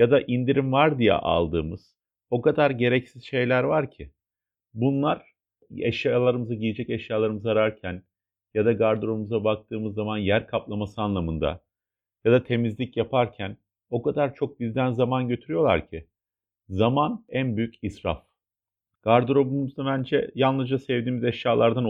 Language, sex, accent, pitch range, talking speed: Turkish, male, native, 100-130 Hz, 125 wpm